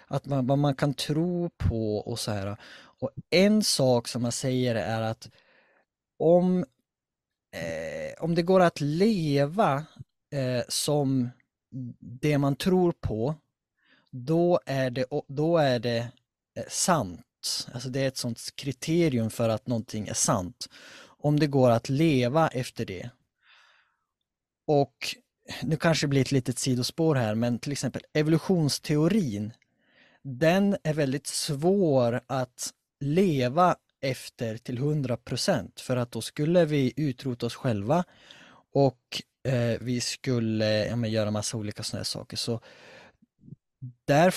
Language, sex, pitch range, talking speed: Swedish, male, 120-150 Hz, 125 wpm